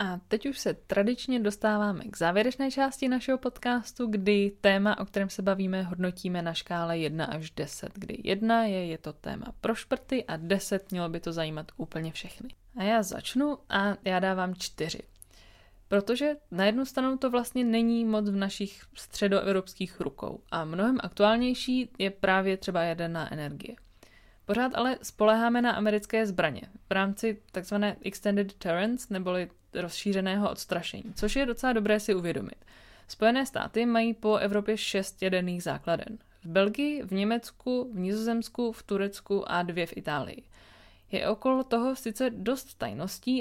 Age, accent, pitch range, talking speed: 20-39, native, 190-230 Hz, 155 wpm